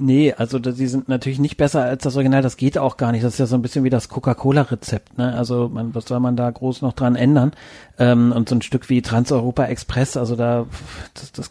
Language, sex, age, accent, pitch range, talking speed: German, male, 40-59, German, 125-145 Hz, 235 wpm